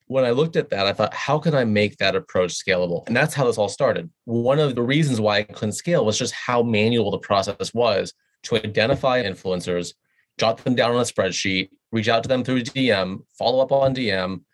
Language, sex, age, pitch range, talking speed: English, male, 30-49, 105-130 Hz, 225 wpm